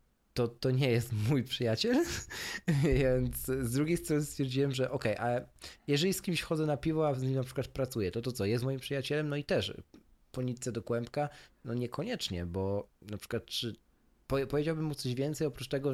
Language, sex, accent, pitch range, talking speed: Polish, male, native, 120-155 Hz, 195 wpm